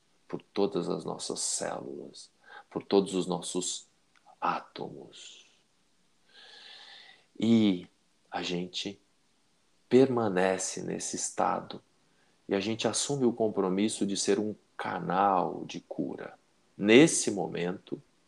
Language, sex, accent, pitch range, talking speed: Portuguese, male, Brazilian, 85-100 Hz, 100 wpm